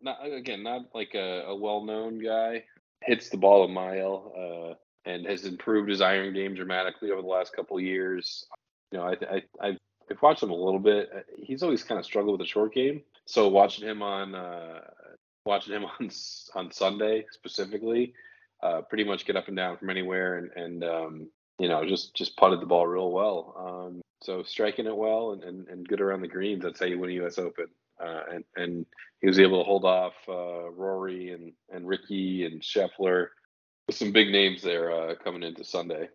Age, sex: 20-39, male